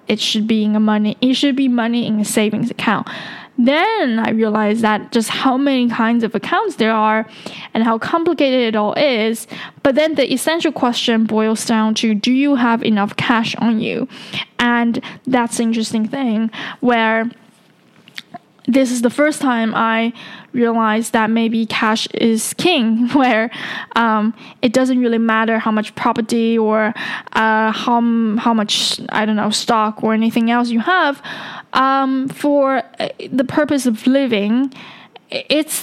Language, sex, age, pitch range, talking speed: English, female, 10-29, 220-255 Hz, 160 wpm